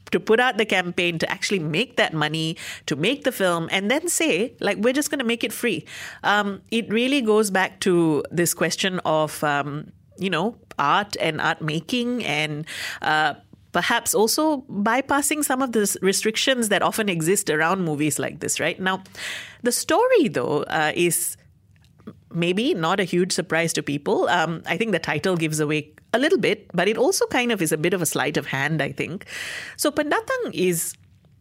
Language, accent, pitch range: English, Indian, 165-225 Hz